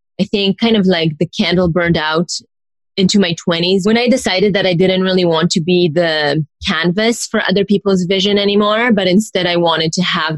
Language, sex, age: English, female, 20-39